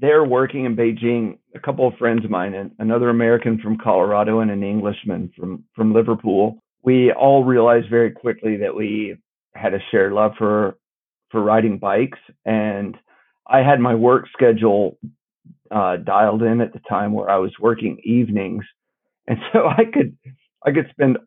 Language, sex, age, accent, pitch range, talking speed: English, male, 50-69, American, 110-120 Hz, 170 wpm